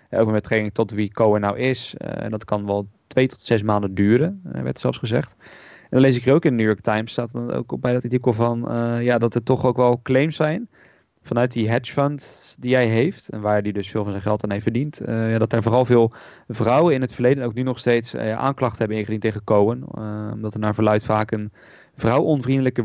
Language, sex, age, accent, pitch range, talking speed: Dutch, male, 20-39, Dutch, 105-120 Hz, 255 wpm